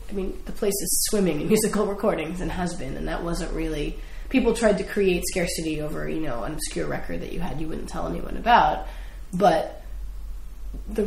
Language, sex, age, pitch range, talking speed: English, female, 20-39, 175-215 Hz, 200 wpm